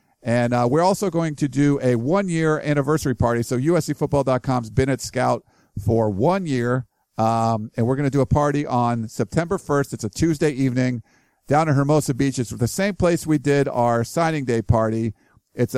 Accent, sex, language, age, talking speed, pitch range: American, male, English, 50-69, 185 wpm, 120-150 Hz